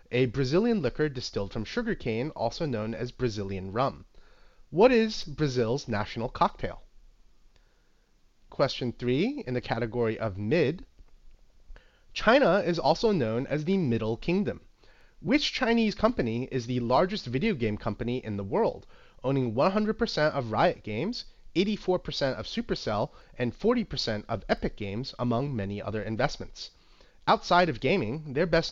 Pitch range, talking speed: 110-175 Hz, 135 wpm